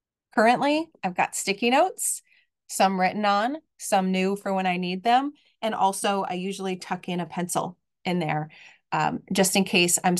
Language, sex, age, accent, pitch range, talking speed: English, female, 30-49, American, 175-210 Hz, 175 wpm